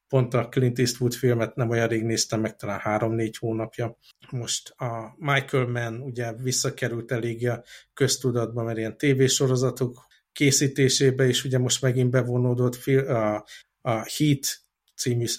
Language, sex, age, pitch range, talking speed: Hungarian, male, 50-69, 115-130 Hz, 135 wpm